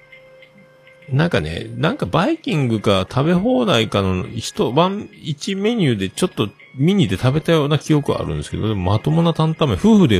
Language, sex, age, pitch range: Japanese, male, 40-59, 95-155 Hz